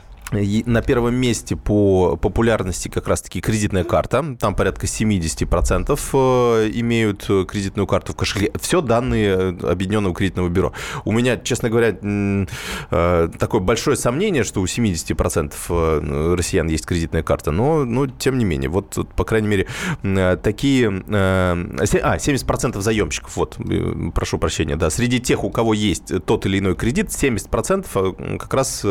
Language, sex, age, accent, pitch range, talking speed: Russian, male, 20-39, native, 90-120 Hz, 135 wpm